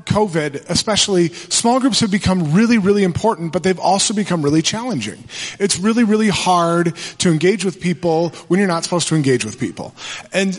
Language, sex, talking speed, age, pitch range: English, male, 180 wpm, 30-49, 160-205 Hz